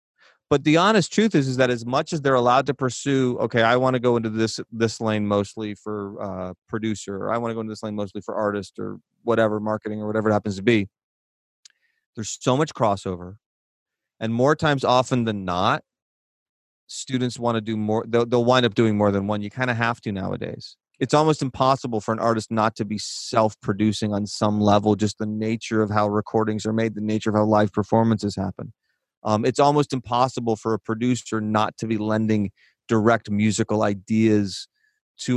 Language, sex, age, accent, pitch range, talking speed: English, male, 30-49, American, 105-125 Hz, 200 wpm